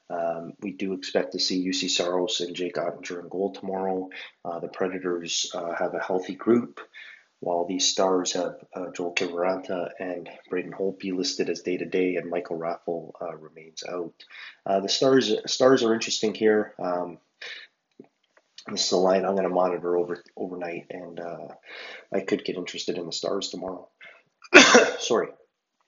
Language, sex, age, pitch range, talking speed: English, male, 30-49, 85-100 Hz, 160 wpm